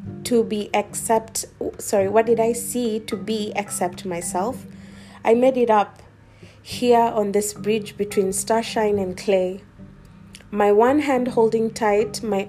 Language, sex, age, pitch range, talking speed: English, female, 20-39, 185-215 Hz, 145 wpm